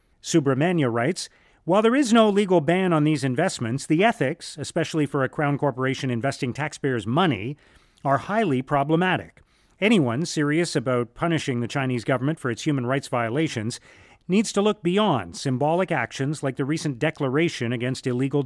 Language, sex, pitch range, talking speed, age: English, male, 130-175 Hz, 155 wpm, 40-59